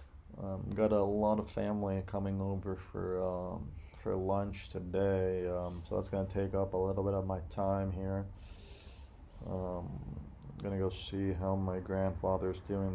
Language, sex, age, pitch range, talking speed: English, male, 20-39, 85-100 Hz, 165 wpm